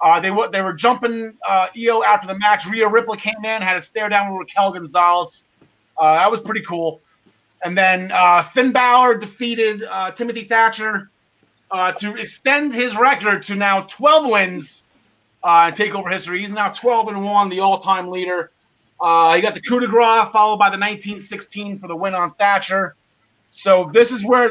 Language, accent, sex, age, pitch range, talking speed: English, American, male, 30-49, 180-235 Hz, 190 wpm